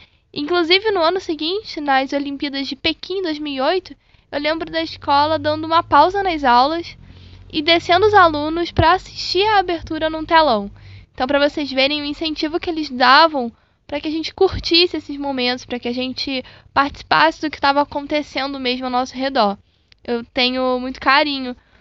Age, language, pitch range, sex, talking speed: 10-29, Portuguese, 255-330 Hz, female, 170 wpm